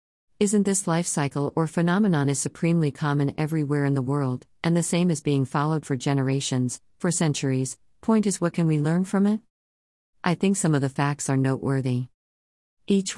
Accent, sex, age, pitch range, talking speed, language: American, female, 50-69, 125-160 Hz, 180 wpm, English